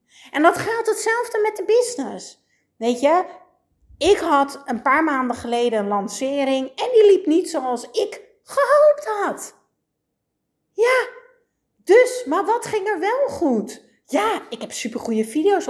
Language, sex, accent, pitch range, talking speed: Dutch, female, Dutch, 235-380 Hz, 145 wpm